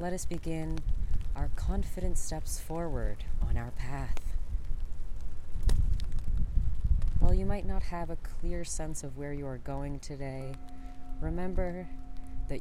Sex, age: female, 30-49